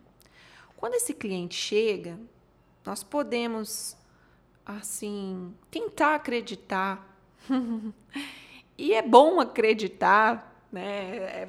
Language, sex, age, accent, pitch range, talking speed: Portuguese, female, 20-39, Brazilian, 190-245 Hz, 80 wpm